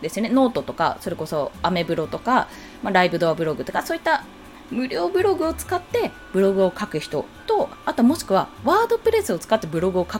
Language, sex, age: Japanese, female, 20-39